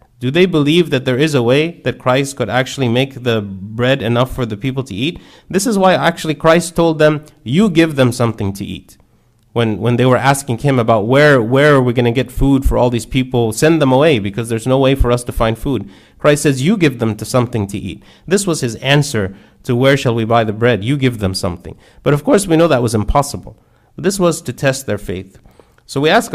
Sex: male